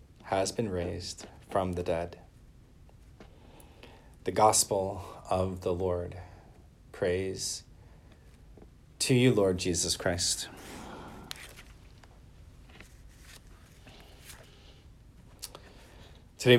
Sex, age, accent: male, 40-59, American